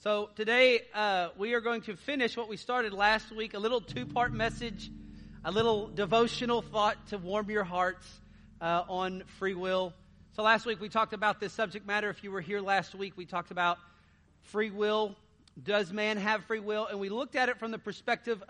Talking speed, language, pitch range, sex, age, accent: 200 wpm, English, 190-225 Hz, male, 40-59, American